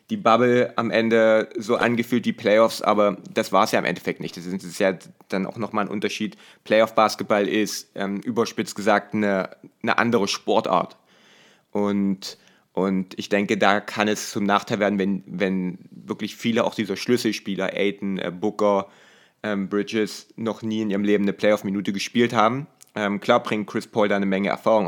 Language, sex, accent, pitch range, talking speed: German, male, German, 100-110 Hz, 175 wpm